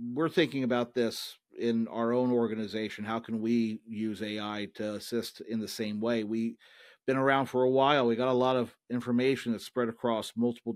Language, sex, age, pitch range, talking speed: English, male, 40-59, 110-125 Hz, 200 wpm